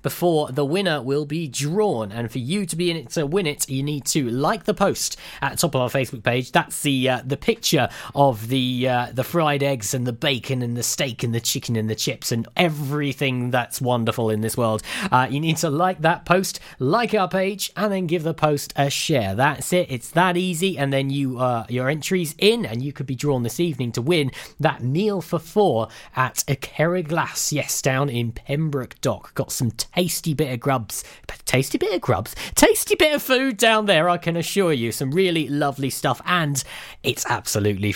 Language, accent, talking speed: English, British, 215 wpm